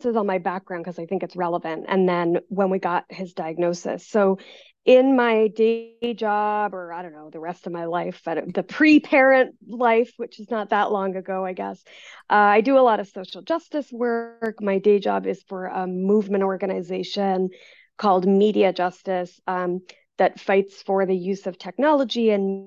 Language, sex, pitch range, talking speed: English, female, 185-225 Hz, 185 wpm